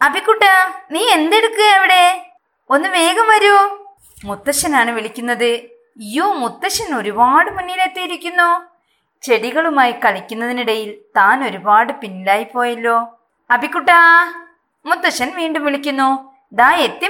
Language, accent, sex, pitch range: Malayalam, native, female, 235-345 Hz